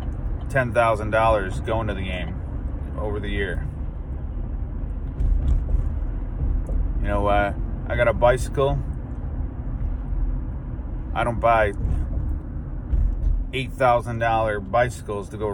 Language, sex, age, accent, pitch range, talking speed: English, male, 30-49, American, 75-120 Hz, 100 wpm